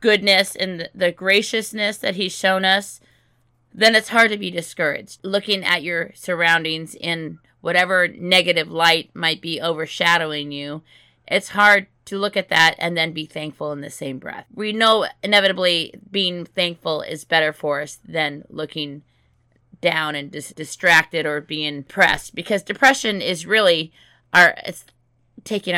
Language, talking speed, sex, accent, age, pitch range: English, 150 wpm, female, American, 30-49, 150-190 Hz